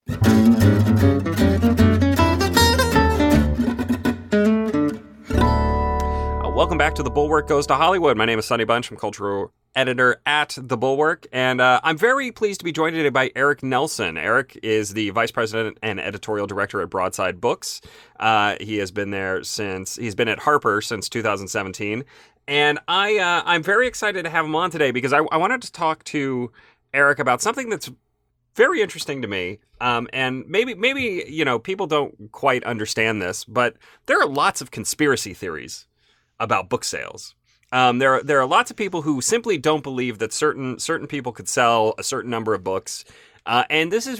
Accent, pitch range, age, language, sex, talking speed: American, 105-150 Hz, 30-49, English, male, 170 wpm